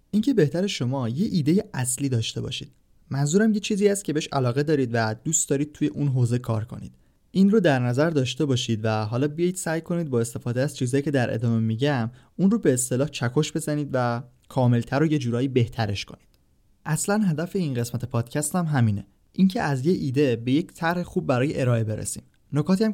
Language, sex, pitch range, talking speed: Persian, male, 120-165 Hz, 200 wpm